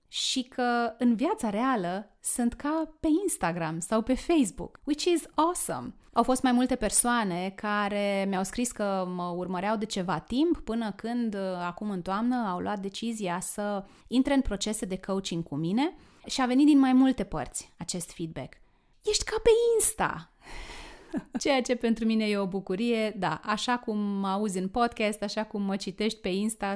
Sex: female